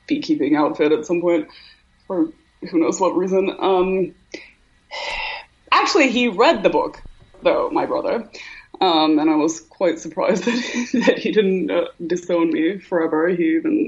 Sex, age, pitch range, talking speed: female, 20-39, 155-210 Hz, 150 wpm